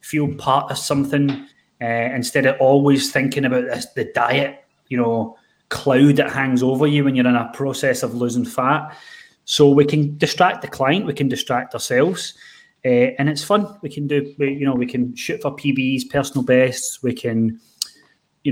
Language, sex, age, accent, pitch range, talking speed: English, male, 30-49, British, 125-145 Hz, 185 wpm